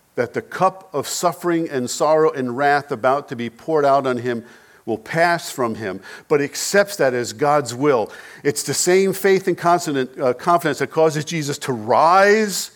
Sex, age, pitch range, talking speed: male, 50-69, 135-175 Hz, 175 wpm